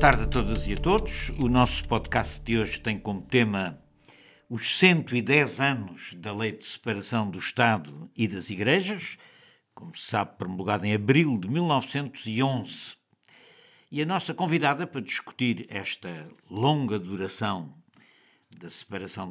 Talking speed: 145 wpm